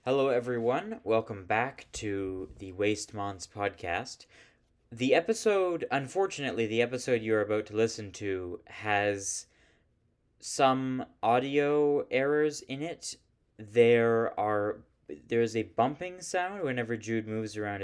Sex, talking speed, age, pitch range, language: male, 120 wpm, 20-39, 100-130 Hz, English